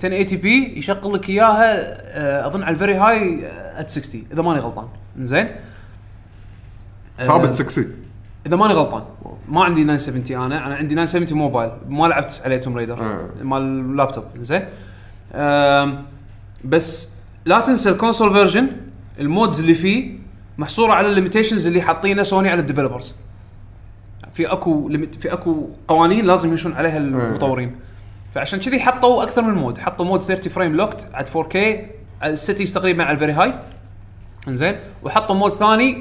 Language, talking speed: Arabic, 140 wpm